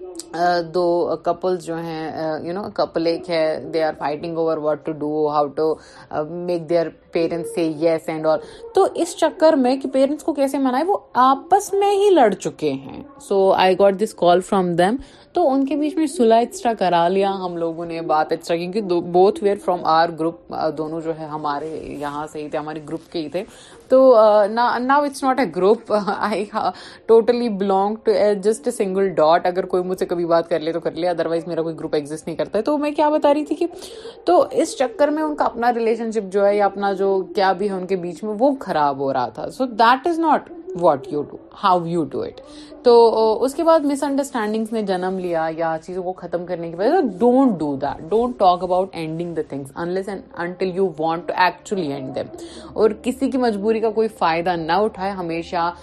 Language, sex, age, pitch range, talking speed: Urdu, female, 30-49, 165-240 Hz, 185 wpm